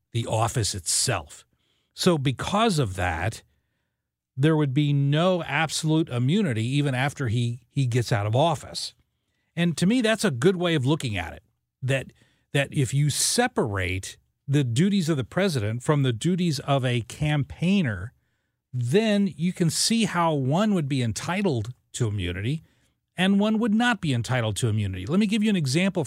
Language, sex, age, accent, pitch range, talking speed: English, male, 40-59, American, 120-170 Hz, 170 wpm